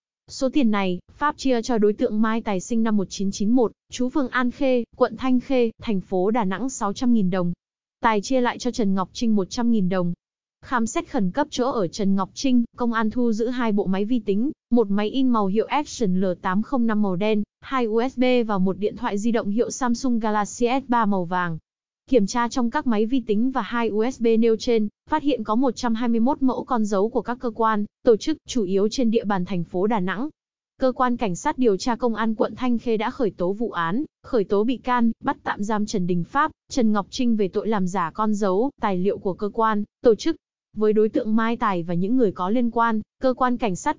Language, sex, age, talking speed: Vietnamese, female, 20-39, 230 wpm